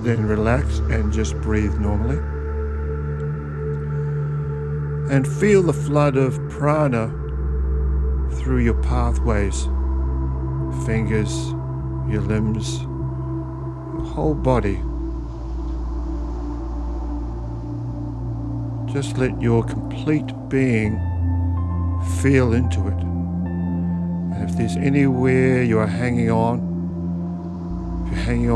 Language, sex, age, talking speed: English, male, 60-79, 80 wpm